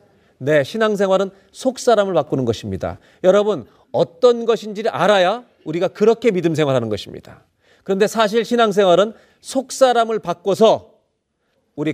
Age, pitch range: 40-59, 170-220 Hz